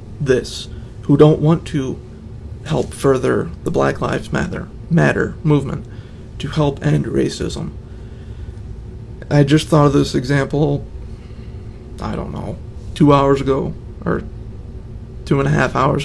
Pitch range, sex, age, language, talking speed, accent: 110-150 Hz, male, 30-49, English, 130 wpm, American